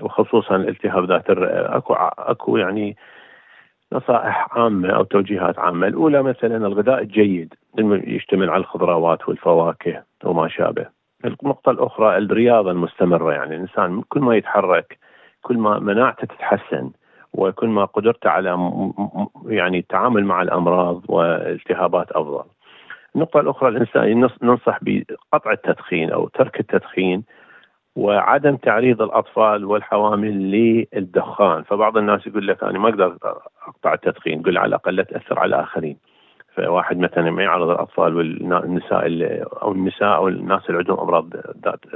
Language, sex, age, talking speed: Arabic, male, 40-59, 130 wpm